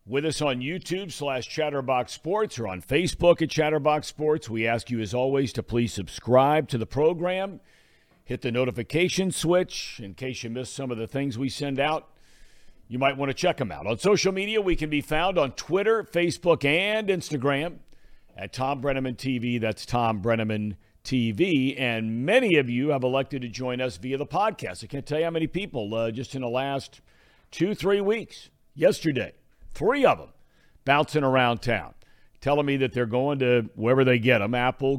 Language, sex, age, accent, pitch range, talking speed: English, male, 50-69, American, 120-155 Hz, 190 wpm